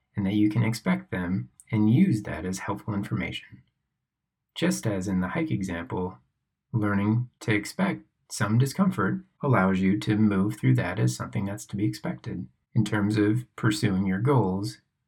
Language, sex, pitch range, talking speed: English, male, 90-115 Hz, 165 wpm